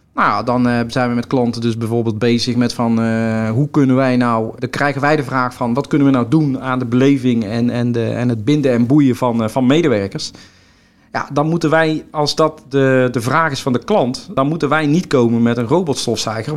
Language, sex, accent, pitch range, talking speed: Dutch, male, Dutch, 120-150 Hz, 230 wpm